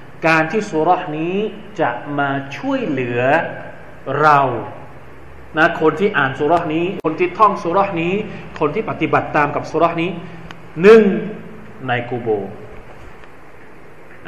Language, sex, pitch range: Thai, male, 130-165 Hz